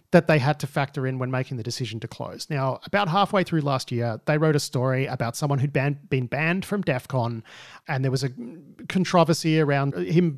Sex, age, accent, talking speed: male, 40-59, Australian, 210 wpm